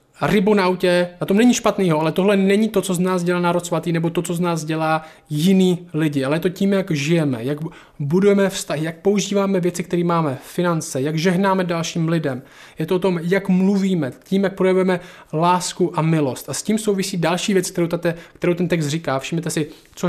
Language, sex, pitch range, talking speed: Czech, male, 150-190 Hz, 210 wpm